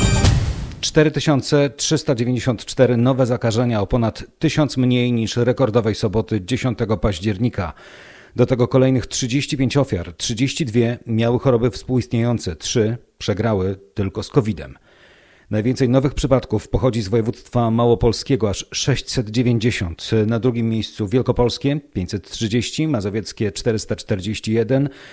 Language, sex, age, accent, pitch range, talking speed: Polish, male, 40-59, native, 105-130 Hz, 100 wpm